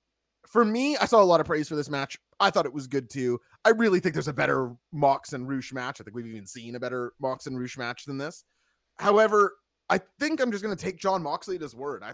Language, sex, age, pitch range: English, male, 20-39, 130-205 Hz